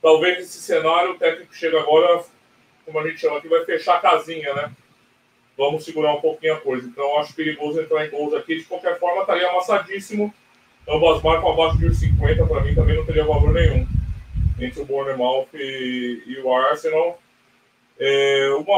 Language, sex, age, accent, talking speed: Portuguese, male, 20-39, Brazilian, 190 wpm